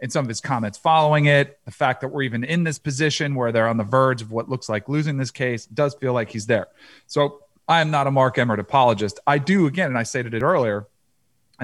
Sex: male